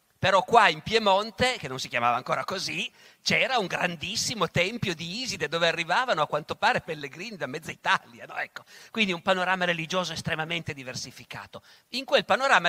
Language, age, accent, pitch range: Italian, 50-69, native, 135-190 Hz